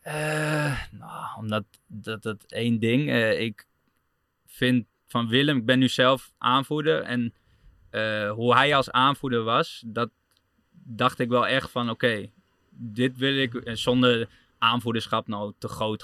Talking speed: 150 wpm